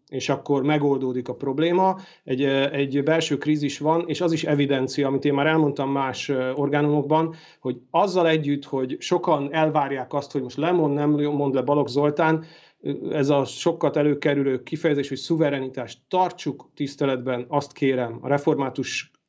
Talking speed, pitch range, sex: 150 wpm, 130-155 Hz, male